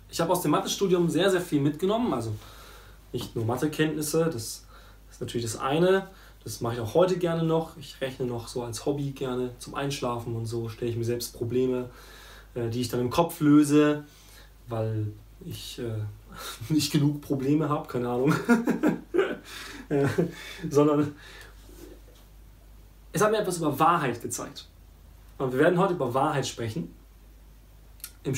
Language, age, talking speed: German, 20-39, 150 wpm